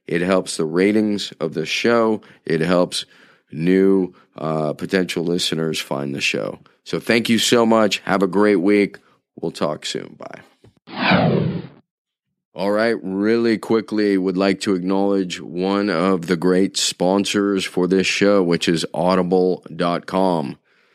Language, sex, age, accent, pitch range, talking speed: English, male, 40-59, American, 95-115 Hz, 135 wpm